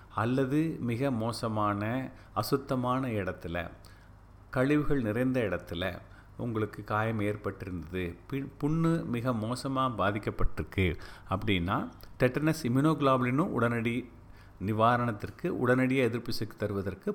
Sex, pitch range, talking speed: male, 100-140 Hz, 90 wpm